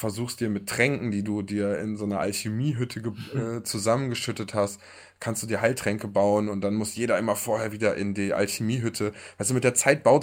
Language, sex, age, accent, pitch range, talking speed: German, male, 20-39, German, 100-120 Hz, 195 wpm